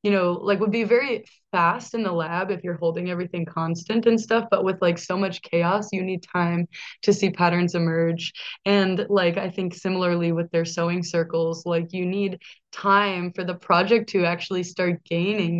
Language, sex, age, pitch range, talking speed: English, female, 20-39, 170-195 Hz, 190 wpm